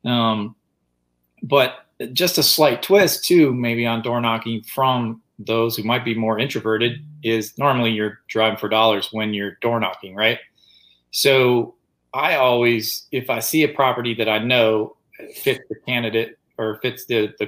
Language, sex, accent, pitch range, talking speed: English, male, American, 110-135 Hz, 160 wpm